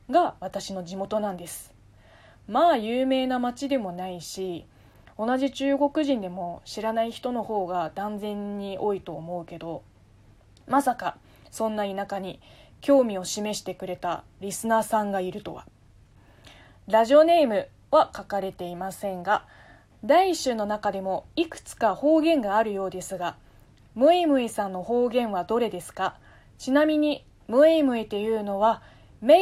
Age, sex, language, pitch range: 20-39, female, Japanese, 185-265 Hz